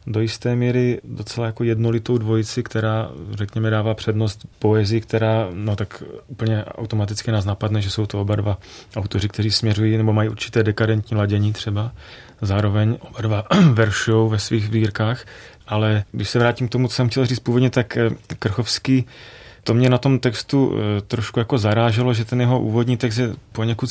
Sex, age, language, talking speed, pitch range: male, 30-49, Czech, 170 wpm, 105-120 Hz